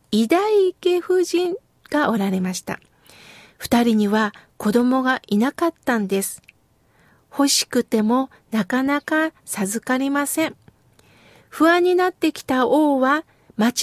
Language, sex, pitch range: Japanese, female, 230-335 Hz